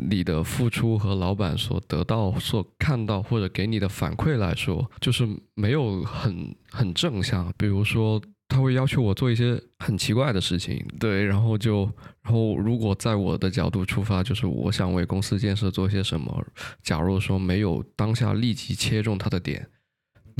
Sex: male